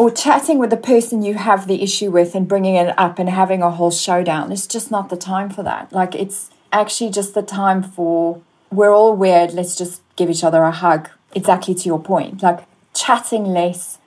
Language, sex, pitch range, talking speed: English, female, 175-205 Hz, 215 wpm